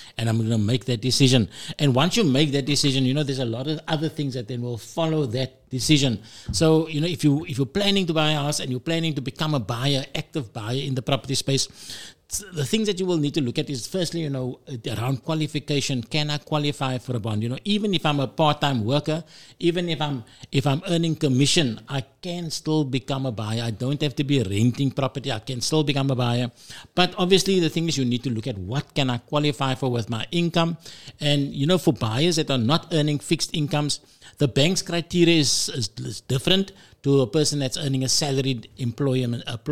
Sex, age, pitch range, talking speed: male, 60-79, 125-155 Hz, 230 wpm